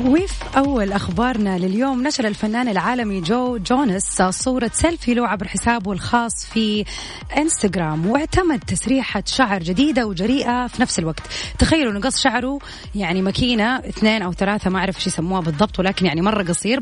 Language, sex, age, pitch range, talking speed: Arabic, female, 30-49, 190-255 Hz, 145 wpm